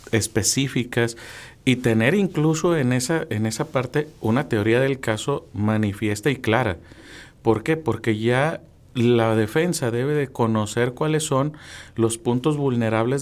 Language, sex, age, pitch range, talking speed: Spanish, male, 40-59, 110-135 Hz, 130 wpm